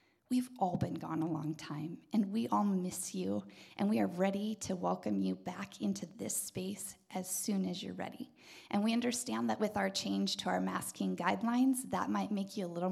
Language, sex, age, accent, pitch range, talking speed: English, female, 20-39, American, 165-220 Hz, 210 wpm